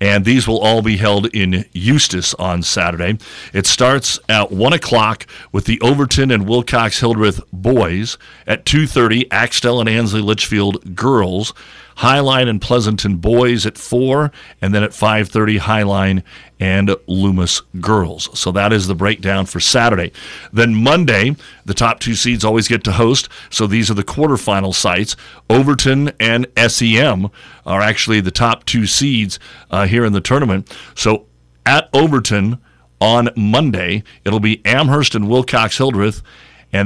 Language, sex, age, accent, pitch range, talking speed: English, male, 50-69, American, 100-120 Hz, 145 wpm